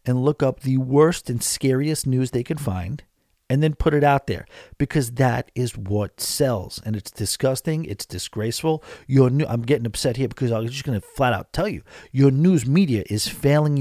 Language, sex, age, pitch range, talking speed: English, male, 40-59, 120-150 Hz, 210 wpm